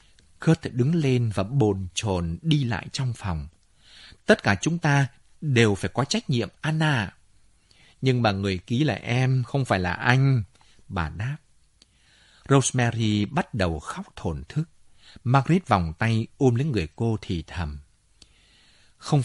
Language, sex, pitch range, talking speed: Vietnamese, male, 95-140 Hz, 150 wpm